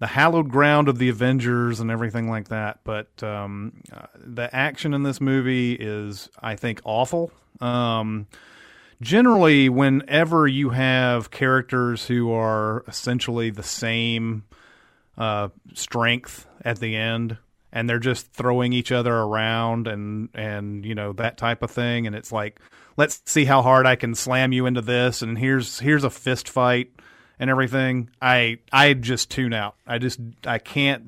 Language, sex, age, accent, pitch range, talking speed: English, male, 30-49, American, 115-130 Hz, 160 wpm